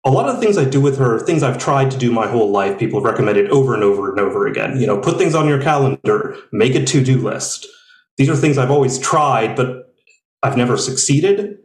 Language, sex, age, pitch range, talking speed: English, male, 30-49, 125-155 Hz, 245 wpm